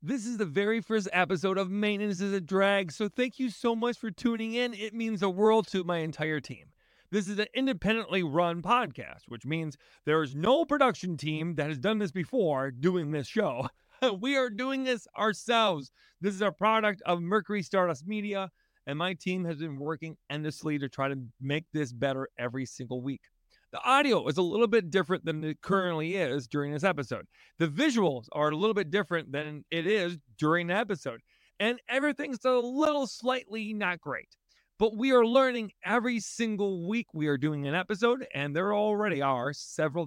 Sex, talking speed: male, 190 wpm